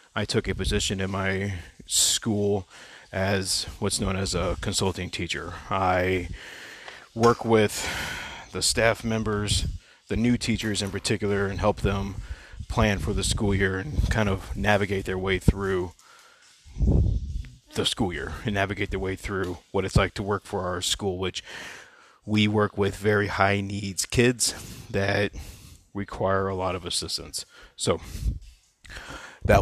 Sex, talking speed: male, 145 wpm